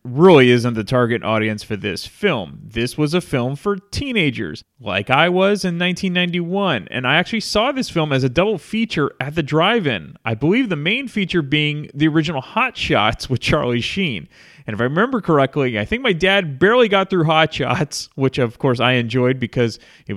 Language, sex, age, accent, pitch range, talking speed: English, male, 30-49, American, 120-180 Hz, 195 wpm